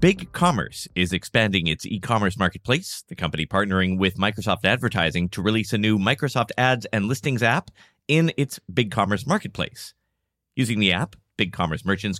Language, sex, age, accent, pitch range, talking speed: English, male, 30-49, American, 90-130 Hz, 160 wpm